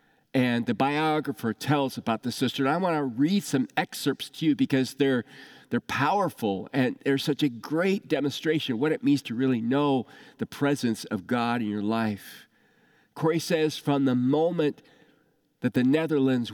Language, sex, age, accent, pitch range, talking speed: English, male, 40-59, American, 120-145 Hz, 175 wpm